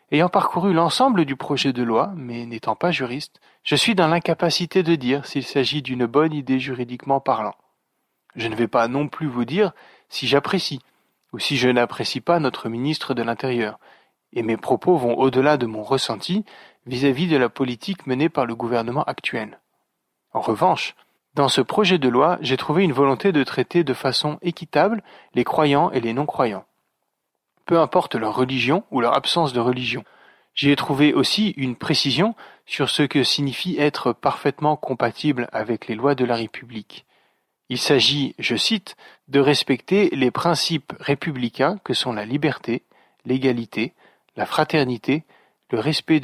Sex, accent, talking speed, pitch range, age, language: male, French, 165 wpm, 125-160 Hz, 30-49, French